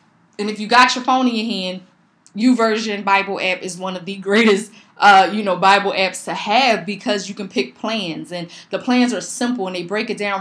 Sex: female